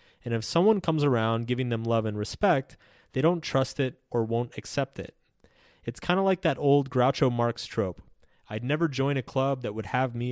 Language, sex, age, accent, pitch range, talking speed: English, male, 30-49, American, 115-155 Hz, 210 wpm